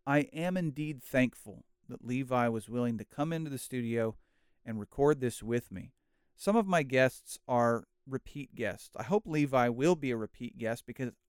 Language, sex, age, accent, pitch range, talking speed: English, male, 40-59, American, 115-150 Hz, 180 wpm